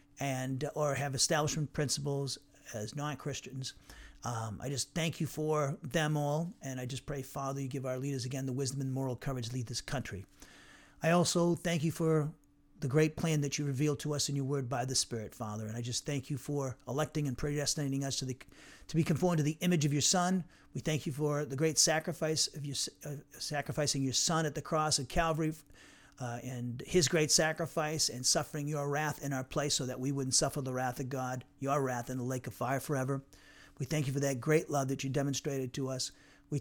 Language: English